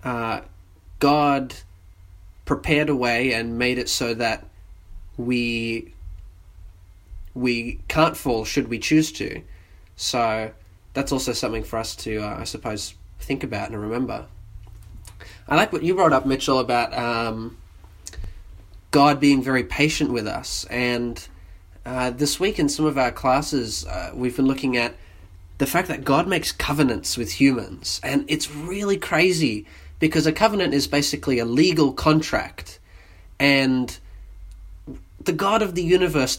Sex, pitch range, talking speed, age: male, 90-140 Hz, 145 wpm, 20-39